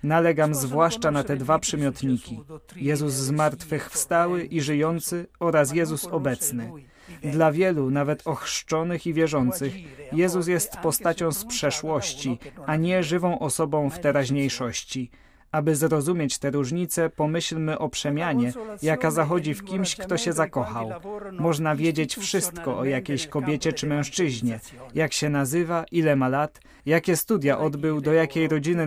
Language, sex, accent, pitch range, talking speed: Polish, male, native, 140-165 Hz, 135 wpm